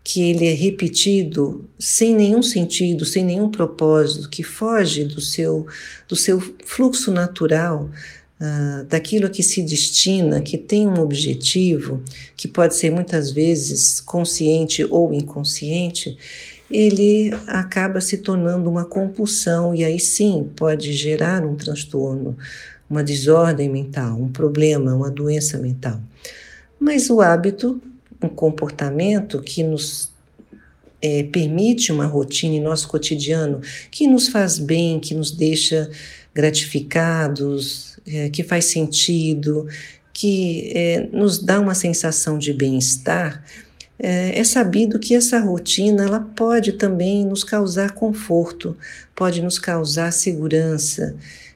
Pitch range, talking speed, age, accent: 150-195 Hz, 120 wpm, 50-69, Brazilian